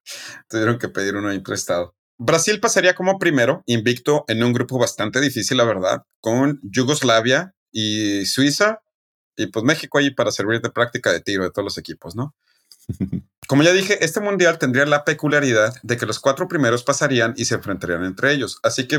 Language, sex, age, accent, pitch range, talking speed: Spanish, male, 40-59, Mexican, 115-150 Hz, 185 wpm